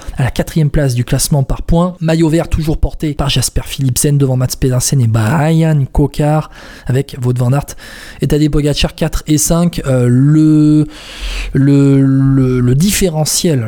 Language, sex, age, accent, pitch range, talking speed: French, male, 20-39, French, 140-175 Hz, 160 wpm